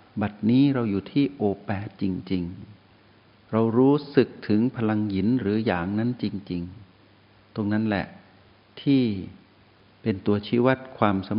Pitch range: 95-120 Hz